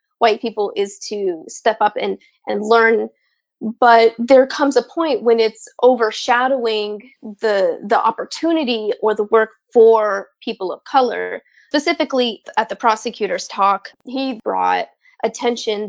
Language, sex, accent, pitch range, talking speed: English, female, American, 215-265 Hz, 130 wpm